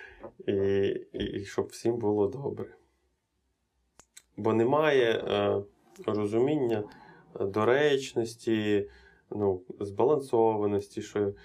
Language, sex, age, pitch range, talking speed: Ukrainian, male, 20-39, 100-120 Hz, 80 wpm